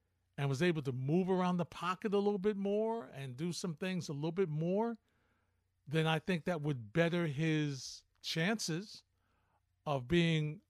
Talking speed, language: 170 wpm, English